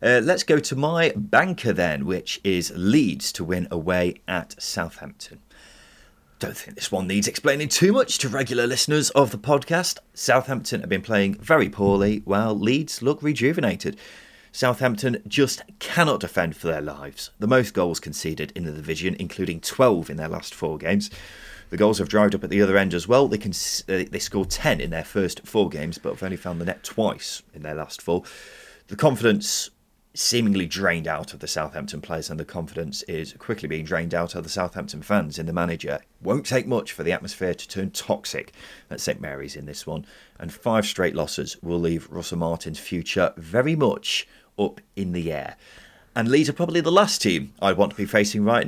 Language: English